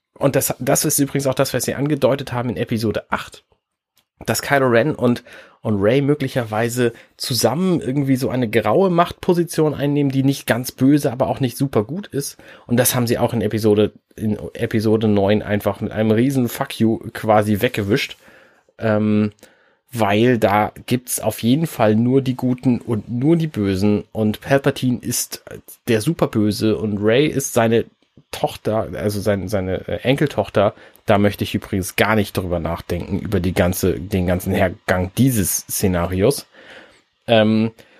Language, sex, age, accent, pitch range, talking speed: German, male, 30-49, German, 110-140 Hz, 160 wpm